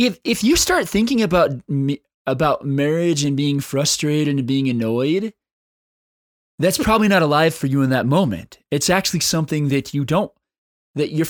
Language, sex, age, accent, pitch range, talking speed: English, male, 20-39, American, 140-220 Hz, 165 wpm